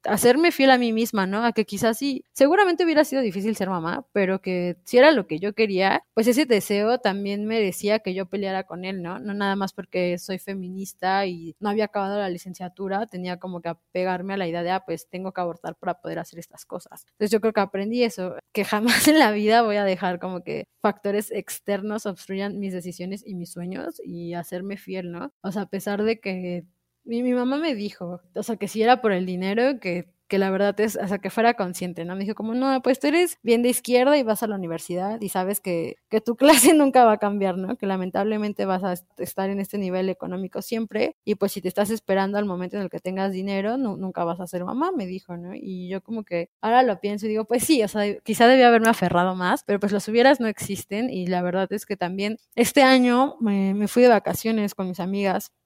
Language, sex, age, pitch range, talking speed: Spanish, female, 20-39, 185-225 Hz, 235 wpm